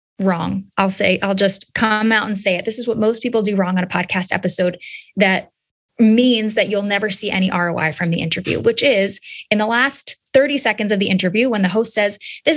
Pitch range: 190-240 Hz